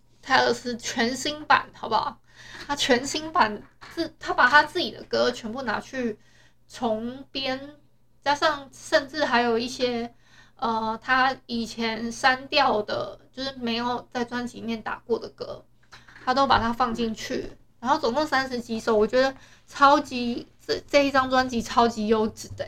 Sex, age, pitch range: female, 20-39, 230-275 Hz